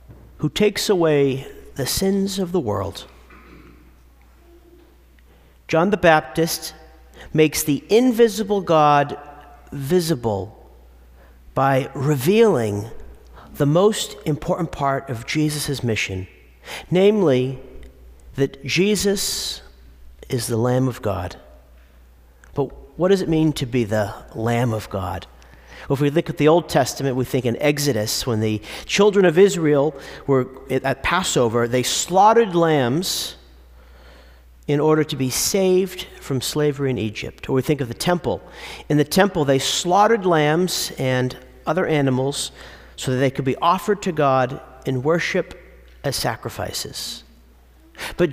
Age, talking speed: 40-59, 130 wpm